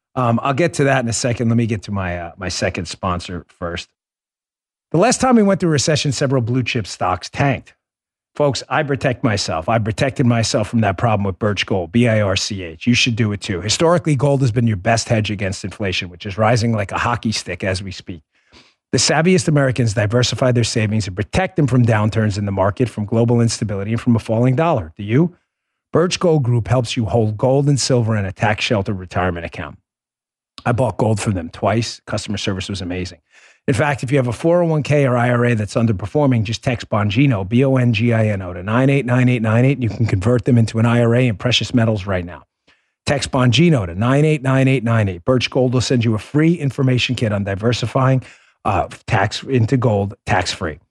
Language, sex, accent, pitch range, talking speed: English, male, American, 105-130 Hz, 200 wpm